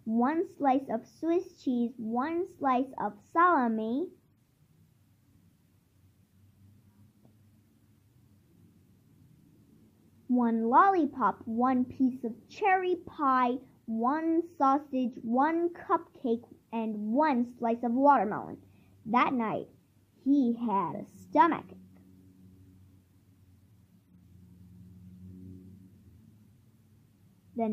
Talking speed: 70 wpm